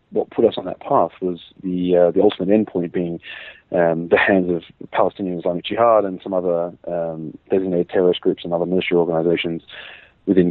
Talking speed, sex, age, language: 190 wpm, male, 30-49, English